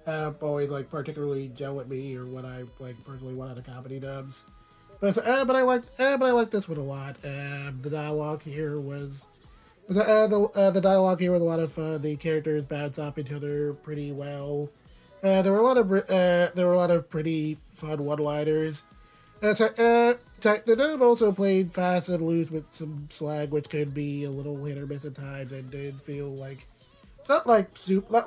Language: English